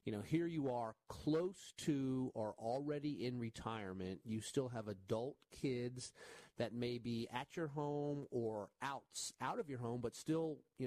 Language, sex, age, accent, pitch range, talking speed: English, male, 40-59, American, 110-140 Hz, 170 wpm